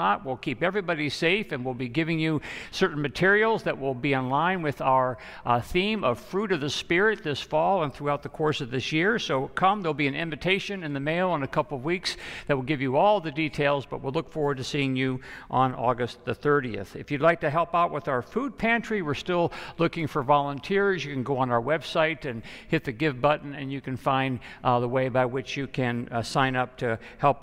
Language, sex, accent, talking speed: English, male, American, 235 wpm